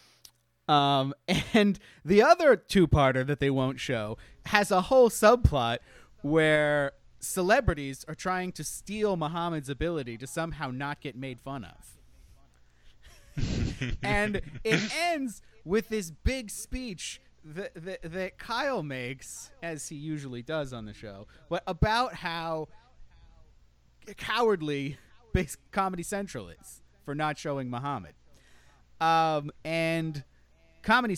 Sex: male